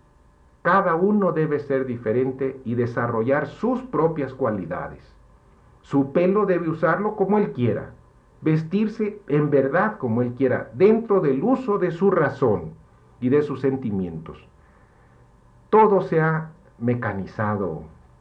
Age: 50-69